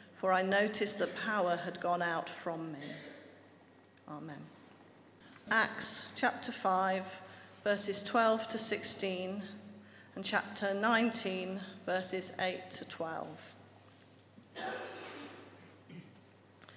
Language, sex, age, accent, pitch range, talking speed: English, female, 40-59, British, 180-220 Hz, 80 wpm